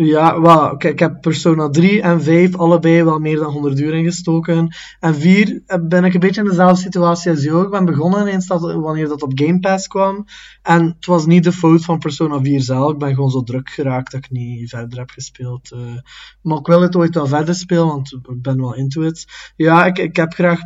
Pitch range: 140-165 Hz